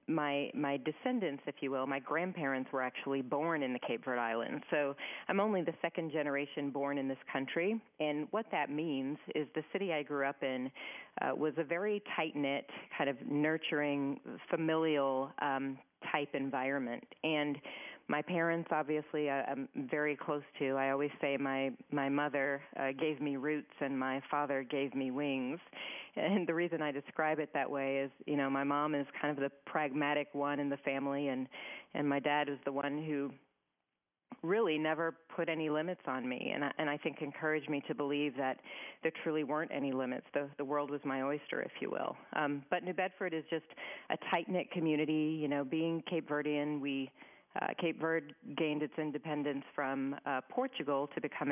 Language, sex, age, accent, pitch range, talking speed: English, female, 40-59, American, 140-155 Hz, 185 wpm